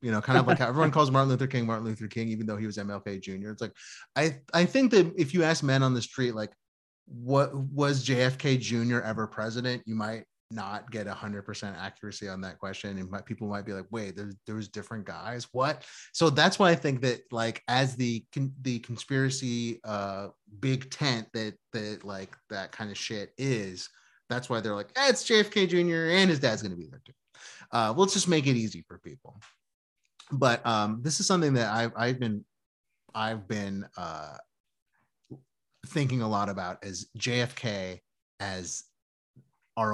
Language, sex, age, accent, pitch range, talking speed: English, male, 30-49, American, 105-135 Hz, 190 wpm